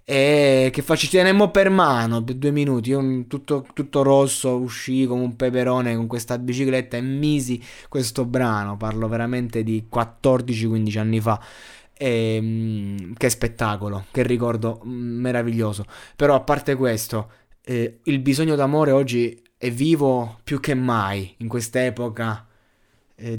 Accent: native